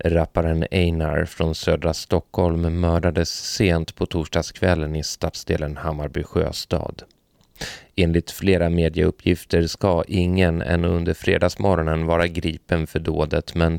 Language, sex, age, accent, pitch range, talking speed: Swedish, male, 30-49, native, 80-85 Hz, 115 wpm